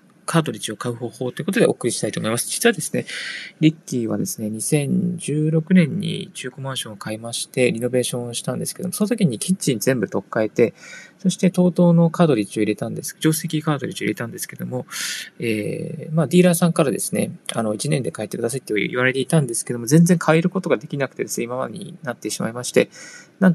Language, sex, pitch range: Japanese, male, 120-175 Hz